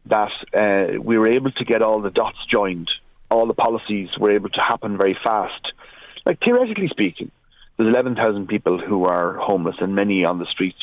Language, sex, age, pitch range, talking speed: English, male, 30-49, 100-135 Hz, 190 wpm